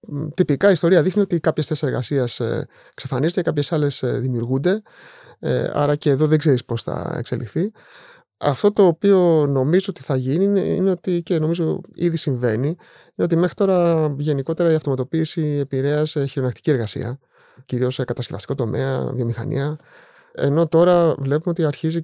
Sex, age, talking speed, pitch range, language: male, 30-49, 150 wpm, 130-170 Hz, Greek